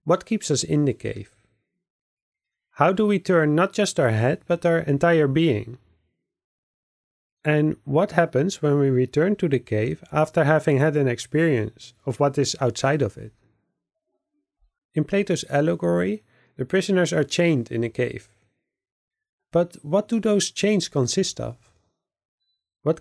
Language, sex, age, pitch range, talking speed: English, male, 30-49, 125-175 Hz, 145 wpm